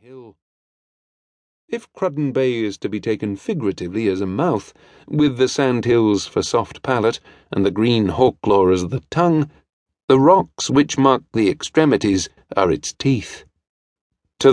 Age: 40-59